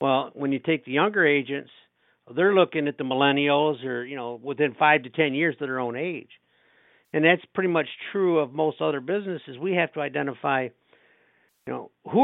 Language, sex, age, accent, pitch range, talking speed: English, male, 60-79, American, 130-160 Hz, 195 wpm